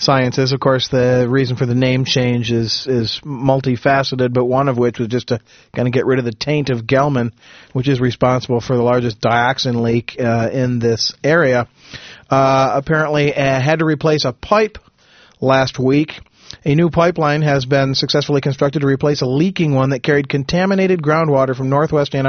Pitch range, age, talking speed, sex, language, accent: 130-160 Hz, 40-59, 185 wpm, male, English, American